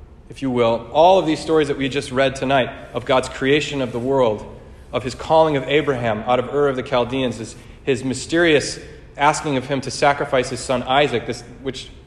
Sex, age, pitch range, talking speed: male, 30-49, 120-145 Hz, 210 wpm